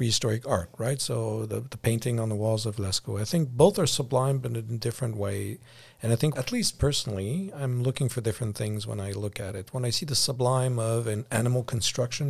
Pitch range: 110-130 Hz